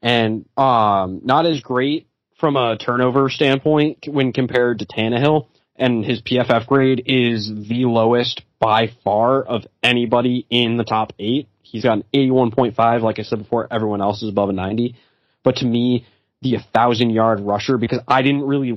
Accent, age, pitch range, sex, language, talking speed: American, 20-39, 110-130 Hz, male, English, 175 wpm